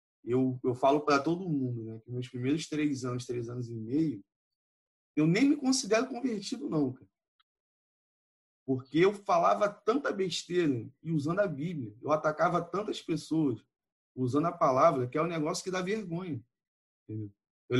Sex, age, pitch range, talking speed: male, 20-39, 140-195 Hz, 160 wpm